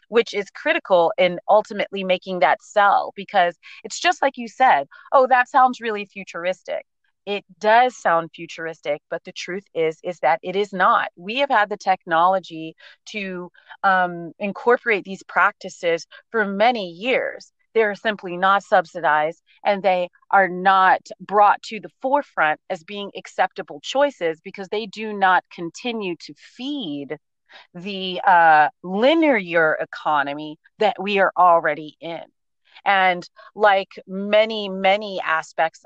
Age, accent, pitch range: 30-49, American, 175-215 Hz